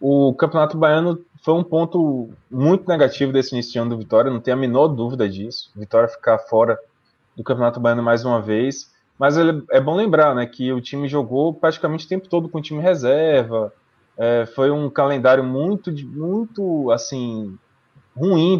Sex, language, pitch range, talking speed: male, Portuguese, 120-155 Hz, 175 wpm